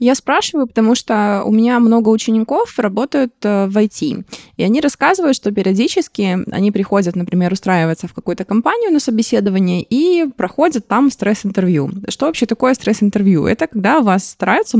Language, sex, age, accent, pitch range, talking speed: Russian, female, 20-39, native, 180-230 Hz, 150 wpm